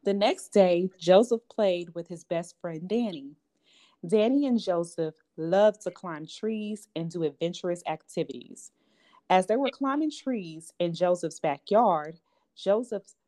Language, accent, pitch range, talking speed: English, American, 170-225 Hz, 135 wpm